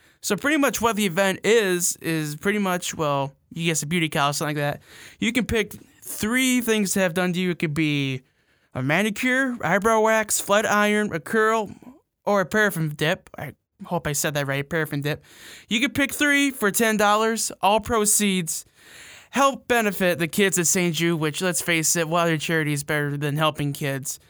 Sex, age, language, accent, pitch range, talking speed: male, 20-39, English, American, 155-210 Hz, 200 wpm